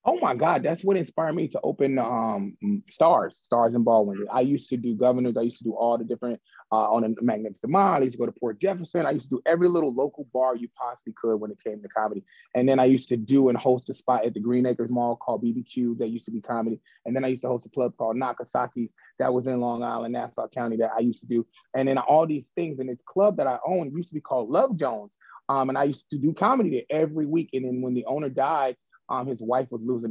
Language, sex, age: English, male, 30-49